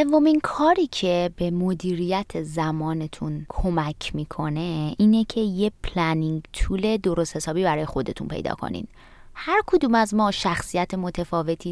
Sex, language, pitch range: female, Persian, 160-205 Hz